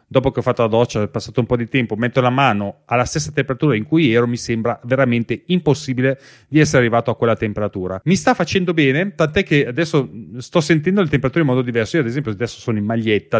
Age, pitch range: 30-49, 115-155 Hz